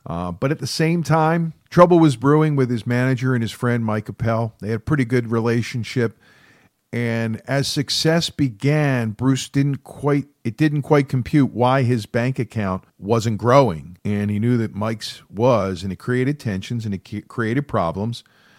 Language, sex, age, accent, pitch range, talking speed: English, male, 50-69, American, 110-140 Hz, 175 wpm